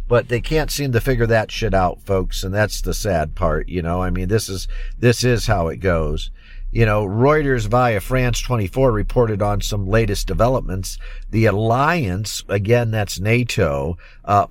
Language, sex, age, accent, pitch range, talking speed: English, male, 50-69, American, 95-125 Hz, 180 wpm